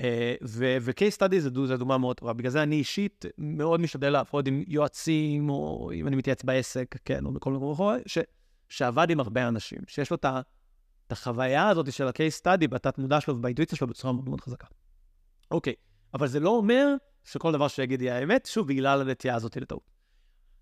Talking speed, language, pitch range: 185 wpm, Hebrew, 130-175 Hz